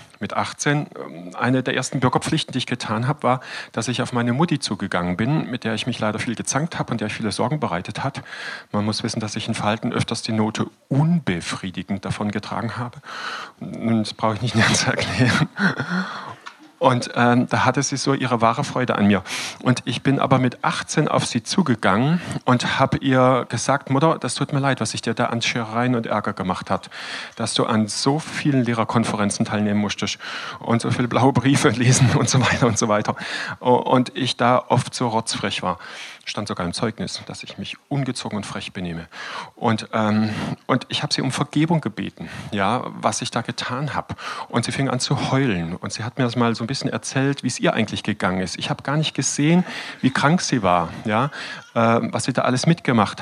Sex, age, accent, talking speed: male, 40-59, German, 210 wpm